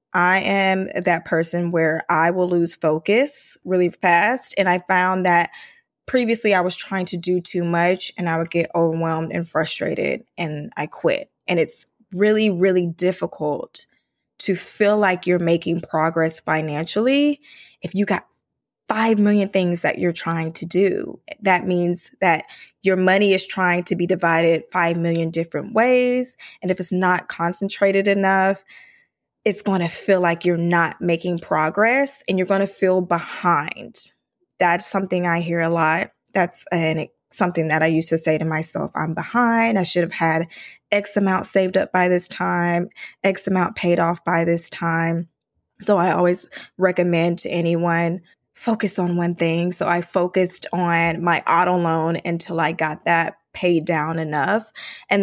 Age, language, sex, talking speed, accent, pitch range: 20-39, English, female, 165 wpm, American, 170-195 Hz